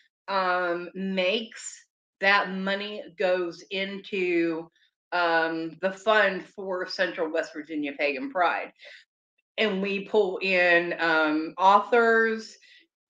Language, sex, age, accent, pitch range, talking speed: English, female, 30-49, American, 175-205 Hz, 95 wpm